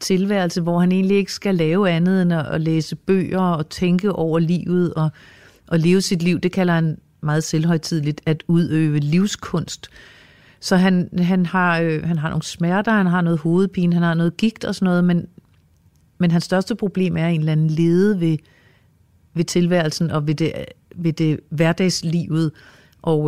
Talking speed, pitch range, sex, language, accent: 180 wpm, 155-185 Hz, female, Danish, native